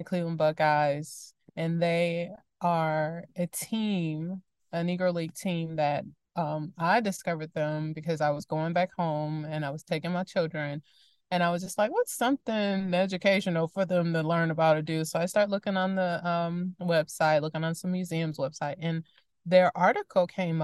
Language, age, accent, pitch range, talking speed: English, 20-39, American, 165-200 Hz, 175 wpm